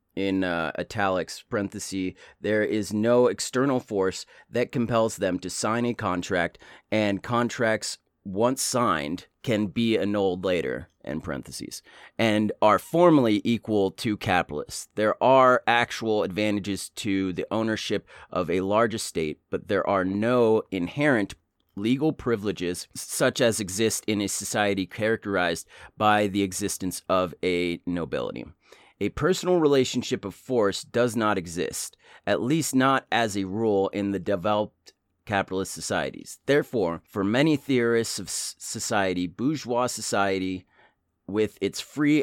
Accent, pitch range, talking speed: American, 95-120 Hz, 130 wpm